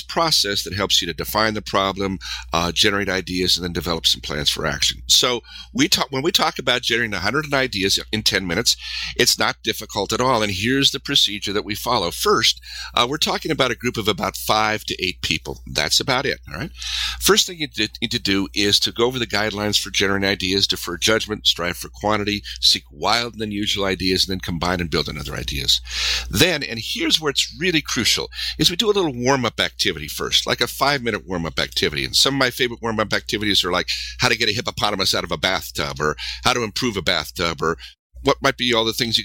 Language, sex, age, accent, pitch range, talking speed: English, male, 50-69, American, 90-120 Hz, 225 wpm